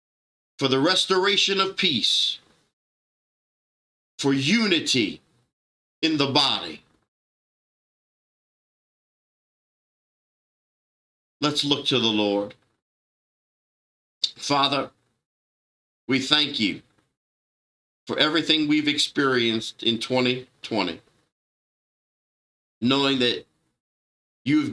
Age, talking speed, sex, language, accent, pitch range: 50-69, 70 wpm, male, English, American, 120-145 Hz